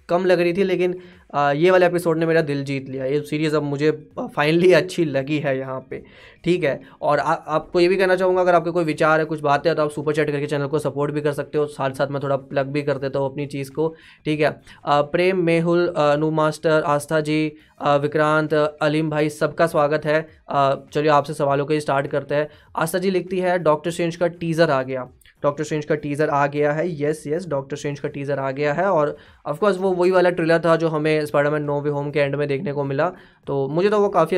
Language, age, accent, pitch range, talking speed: Hindi, 20-39, native, 145-165 Hz, 235 wpm